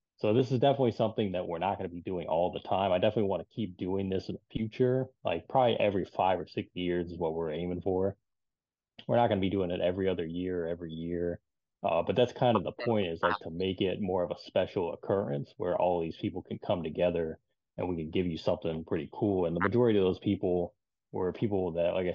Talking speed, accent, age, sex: 245 wpm, American, 20-39, male